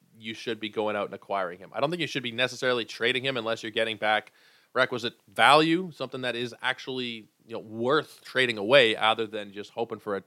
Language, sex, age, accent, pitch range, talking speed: English, male, 30-49, American, 105-135 Hz, 220 wpm